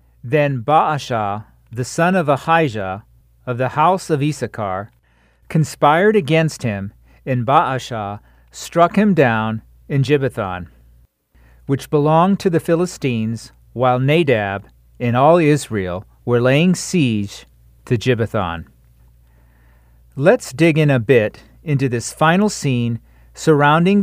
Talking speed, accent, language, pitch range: 115 wpm, American, English, 100-155 Hz